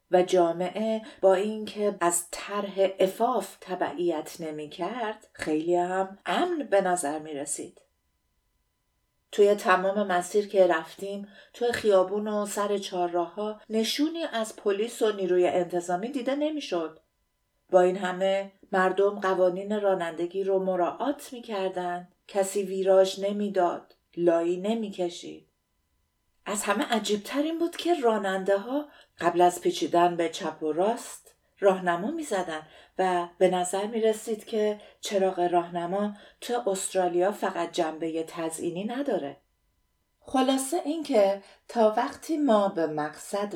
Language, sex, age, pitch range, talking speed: Persian, female, 50-69, 175-220 Hz, 125 wpm